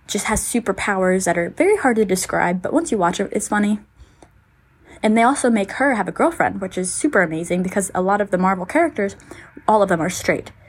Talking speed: 225 wpm